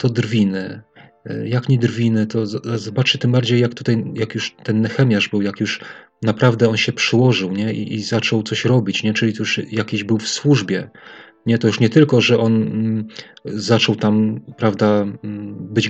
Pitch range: 110-125 Hz